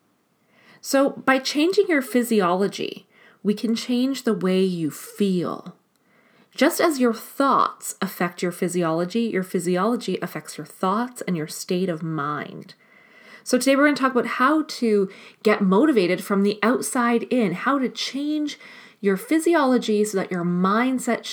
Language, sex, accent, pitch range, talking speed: English, female, American, 185-240 Hz, 150 wpm